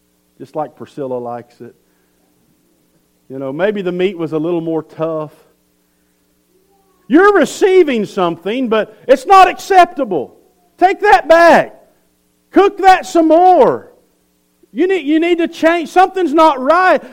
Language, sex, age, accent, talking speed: English, male, 50-69, American, 135 wpm